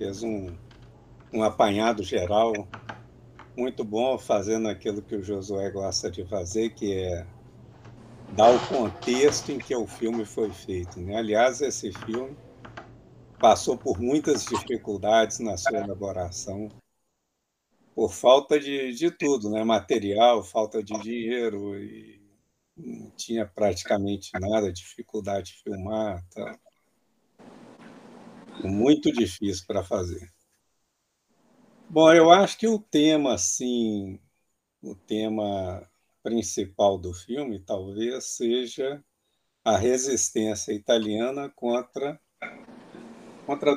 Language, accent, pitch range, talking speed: Portuguese, Brazilian, 100-125 Hz, 110 wpm